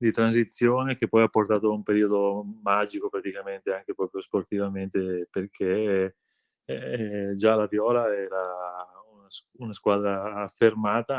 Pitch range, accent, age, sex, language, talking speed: 95-105 Hz, native, 20-39, male, Italian, 125 wpm